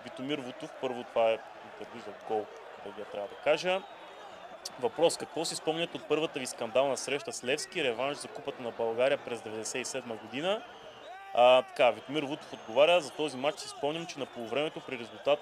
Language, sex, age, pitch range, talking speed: Bulgarian, male, 20-39, 120-155 Hz, 180 wpm